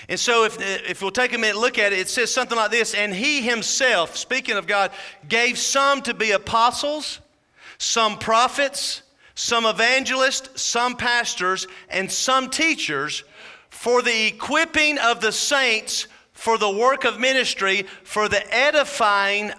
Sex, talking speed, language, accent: male, 155 wpm, English, American